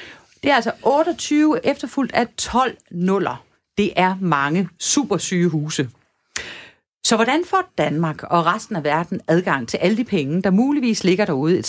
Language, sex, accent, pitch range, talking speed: Danish, female, native, 160-235 Hz, 165 wpm